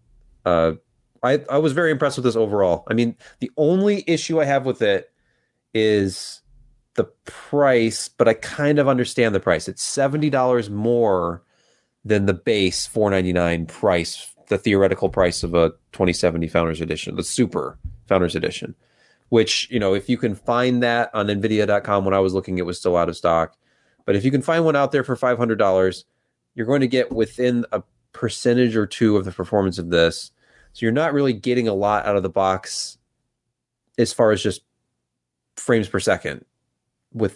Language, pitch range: English, 95-125 Hz